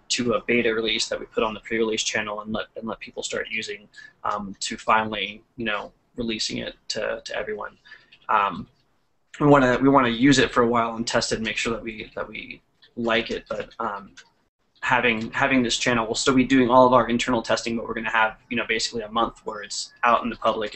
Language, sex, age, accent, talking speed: English, male, 20-39, American, 235 wpm